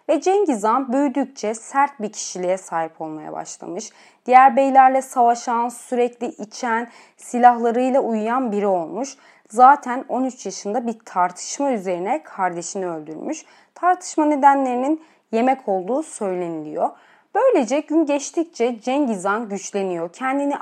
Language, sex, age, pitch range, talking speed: Turkish, female, 30-49, 205-265 Hz, 110 wpm